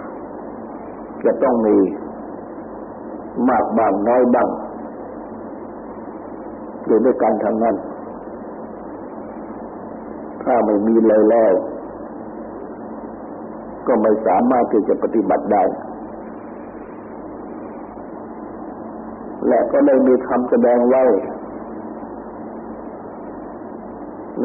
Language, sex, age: Thai, male, 60-79